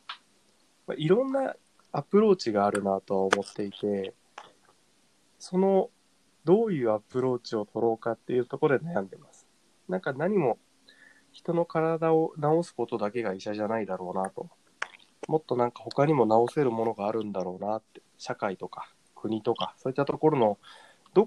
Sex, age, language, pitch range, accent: male, 20-39, Japanese, 105-155 Hz, native